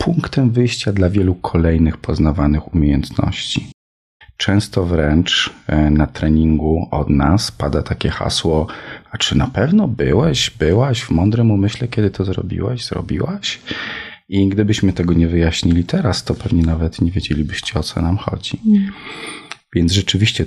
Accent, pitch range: native, 80-105 Hz